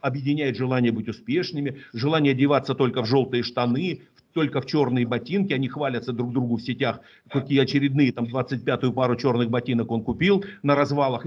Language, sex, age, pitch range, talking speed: Russian, male, 50-69, 130-170 Hz, 165 wpm